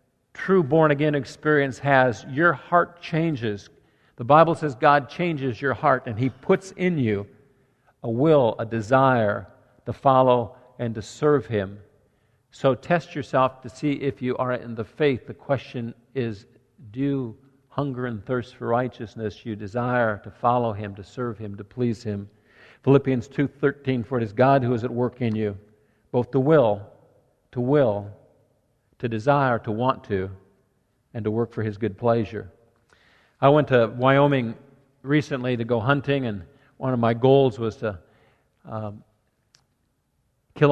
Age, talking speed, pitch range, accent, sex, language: 50-69, 160 wpm, 115-140 Hz, American, male, English